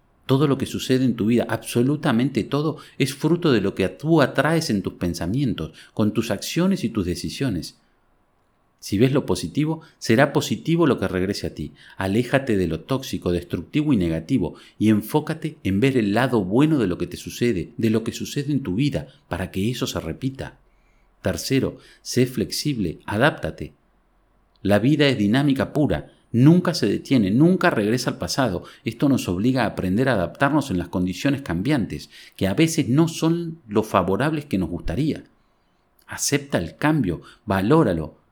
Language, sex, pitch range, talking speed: Spanish, male, 95-145 Hz, 170 wpm